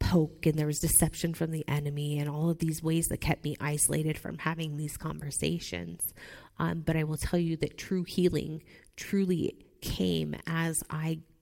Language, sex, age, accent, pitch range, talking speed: English, female, 30-49, American, 150-170 Hz, 180 wpm